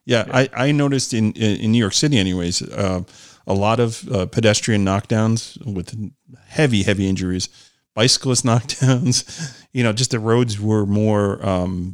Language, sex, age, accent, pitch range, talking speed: English, male, 40-59, American, 100-125 Hz, 155 wpm